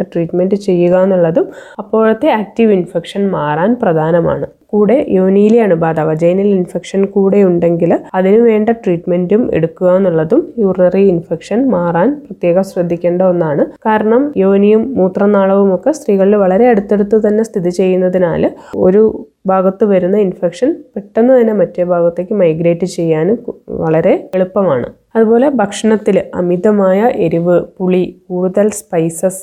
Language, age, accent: Malayalam, 20-39, native